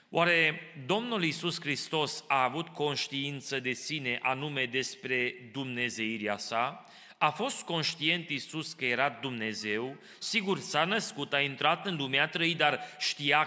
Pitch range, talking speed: 130-165 Hz, 135 wpm